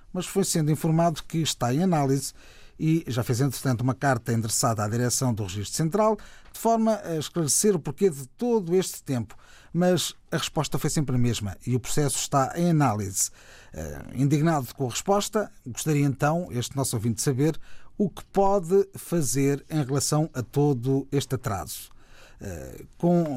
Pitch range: 125-170 Hz